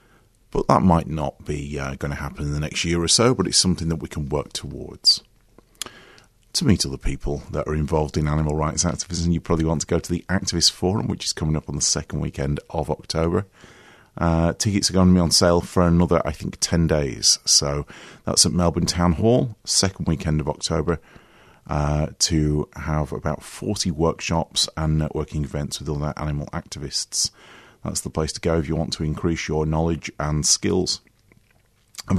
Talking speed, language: 195 wpm, English